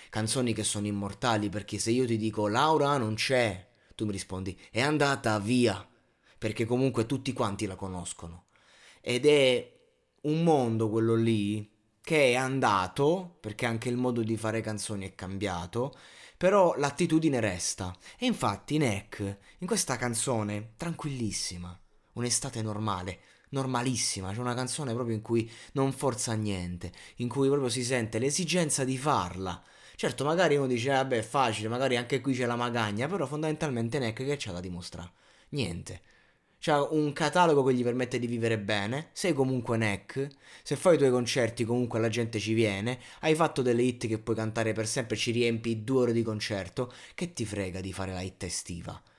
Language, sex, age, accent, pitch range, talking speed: Italian, male, 20-39, native, 105-135 Hz, 170 wpm